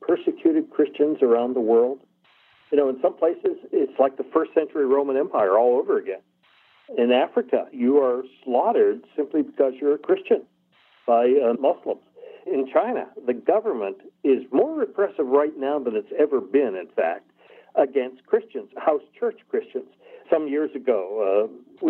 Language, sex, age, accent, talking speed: English, male, 60-79, American, 155 wpm